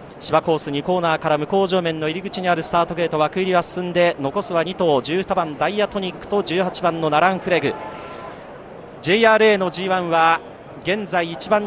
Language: Japanese